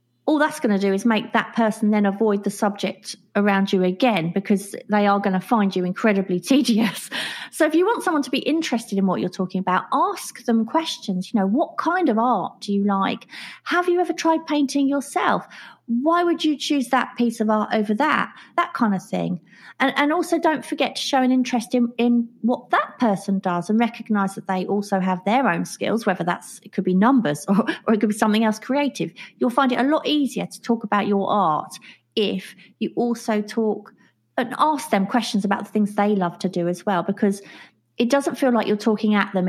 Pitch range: 200-250 Hz